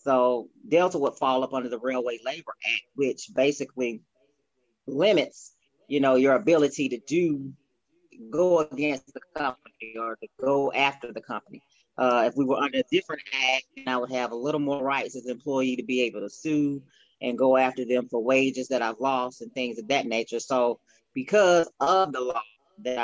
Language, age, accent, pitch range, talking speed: English, 30-49, American, 120-145 Hz, 190 wpm